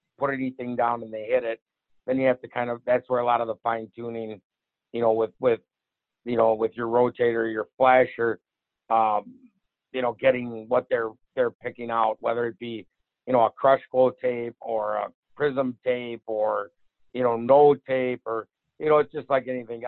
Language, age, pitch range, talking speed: English, 50-69, 115-130 Hz, 200 wpm